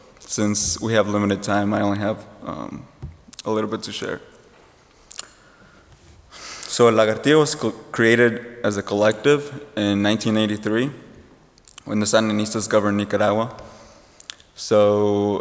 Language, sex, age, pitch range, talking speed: English, male, 20-39, 105-120 Hz, 115 wpm